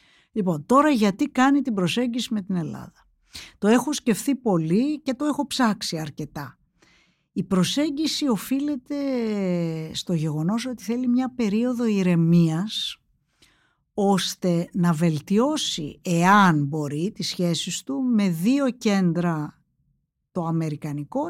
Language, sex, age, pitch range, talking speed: Greek, female, 50-69, 160-215 Hz, 115 wpm